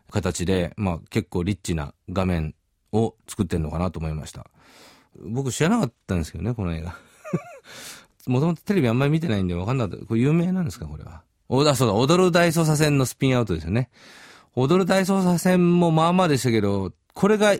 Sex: male